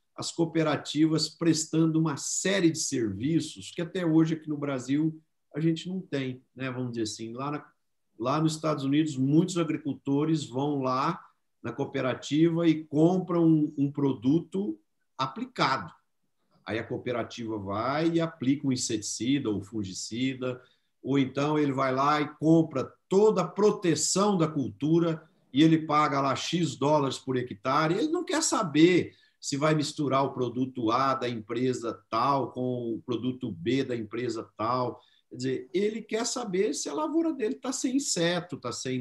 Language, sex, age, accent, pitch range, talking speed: Portuguese, male, 50-69, Brazilian, 130-165 Hz, 155 wpm